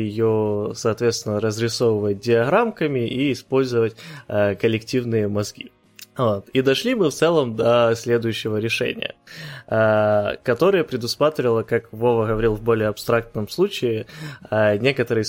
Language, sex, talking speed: Ukrainian, male, 120 wpm